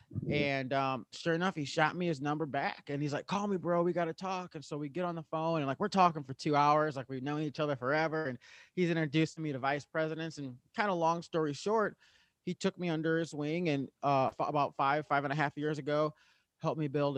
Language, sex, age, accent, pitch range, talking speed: English, male, 30-49, American, 130-160 Hz, 250 wpm